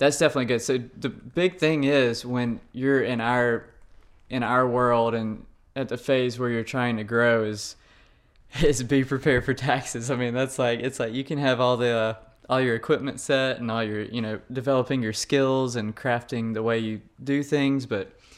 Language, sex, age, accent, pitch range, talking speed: English, male, 20-39, American, 110-130 Hz, 200 wpm